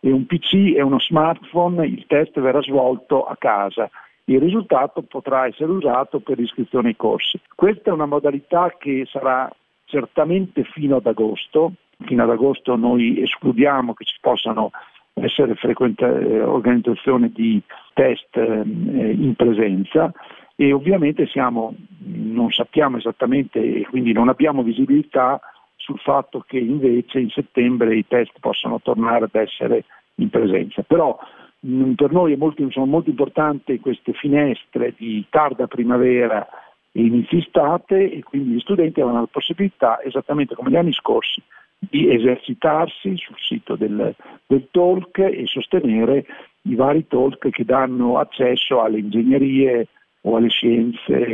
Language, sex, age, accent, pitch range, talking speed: Italian, male, 50-69, native, 120-160 Hz, 140 wpm